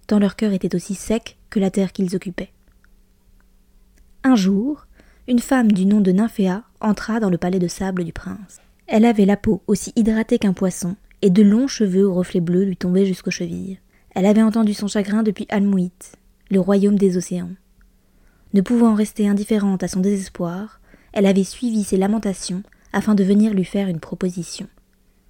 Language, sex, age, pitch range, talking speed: French, female, 20-39, 185-220 Hz, 180 wpm